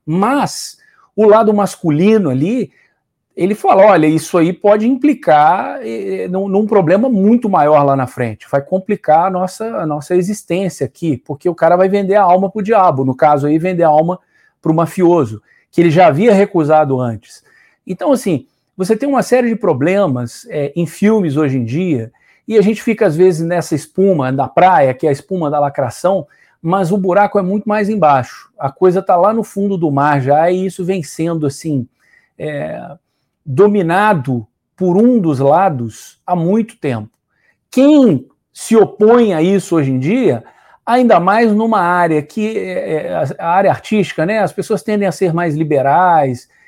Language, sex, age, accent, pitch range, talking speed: Portuguese, male, 50-69, Brazilian, 150-205 Hz, 175 wpm